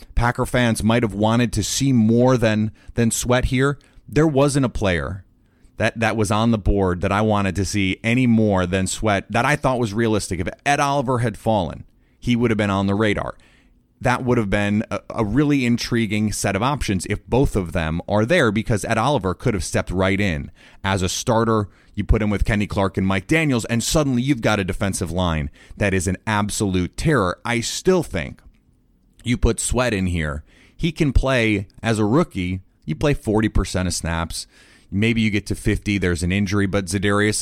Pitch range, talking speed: 100-125 Hz, 200 wpm